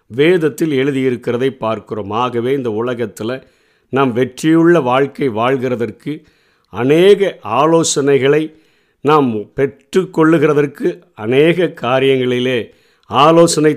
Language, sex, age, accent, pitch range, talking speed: Tamil, male, 50-69, native, 125-155 Hz, 80 wpm